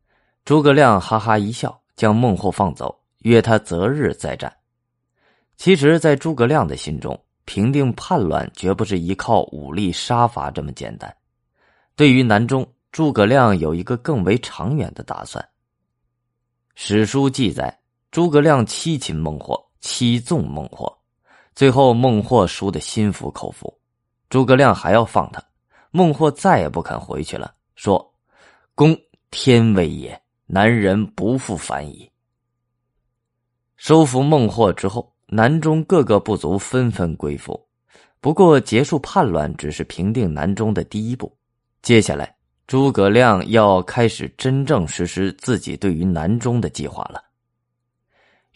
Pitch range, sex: 95-130 Hz, male